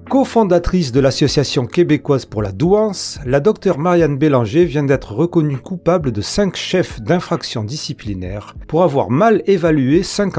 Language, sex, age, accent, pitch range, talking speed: French, male, 40-59, French, 125-180 Hz, 145 wpm